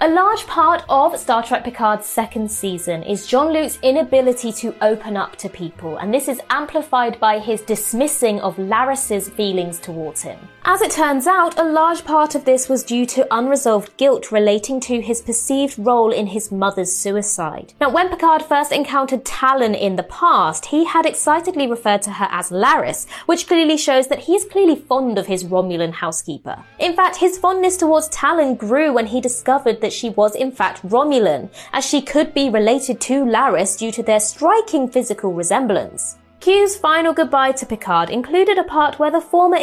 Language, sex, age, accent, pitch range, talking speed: English, female, 20-39, British, 210-305 Hz, 185 wpm